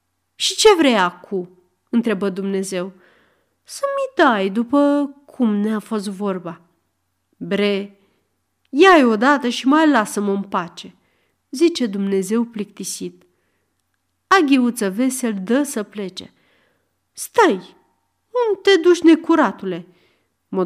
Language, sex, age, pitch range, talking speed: Romanian, female, 40-59, 200-290 Hz, 100 wpm